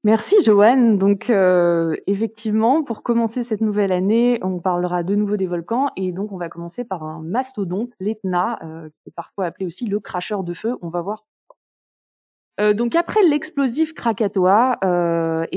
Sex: female